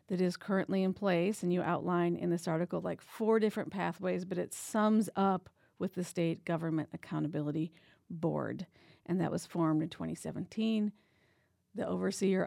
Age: 50-69